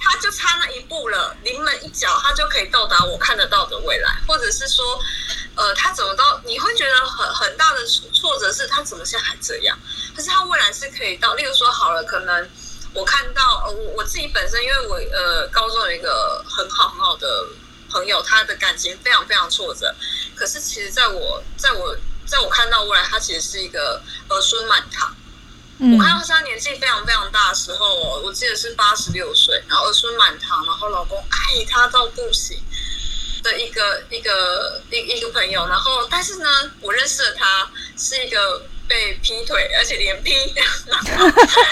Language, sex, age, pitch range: Chinese, female, 20-39, 240-390 Hz